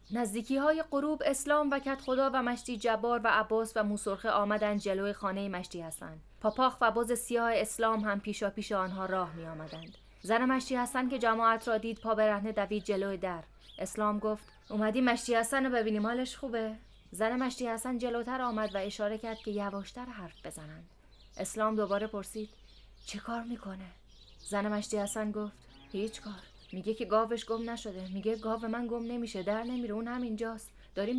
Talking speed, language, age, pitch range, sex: 175 wpm, Persian, 20-39, 195-230 Hz, female